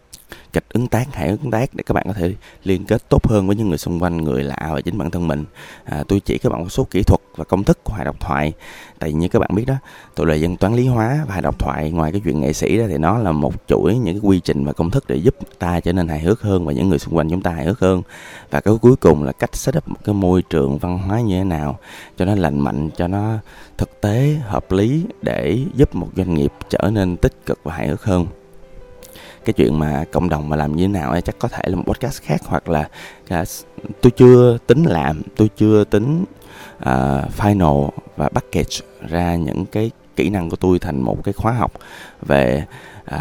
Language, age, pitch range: Vietnamese, 20-39, 75-105 Hz